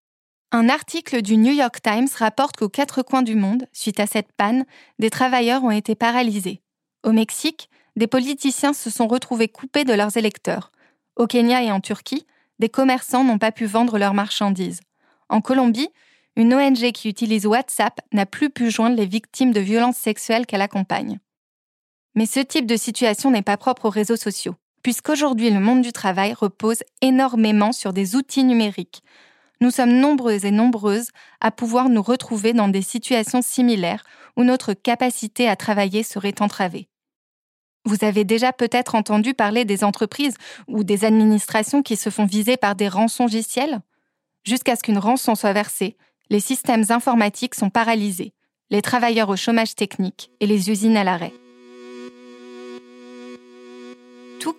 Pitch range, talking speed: 210-255 Hz, 160 wpm